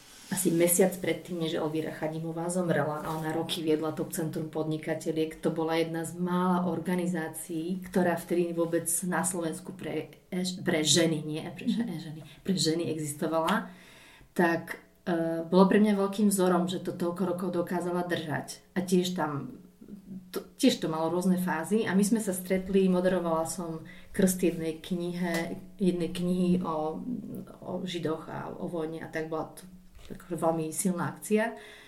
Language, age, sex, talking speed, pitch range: Slovak, 30-49, female, 155 wpm, 165-185 Hz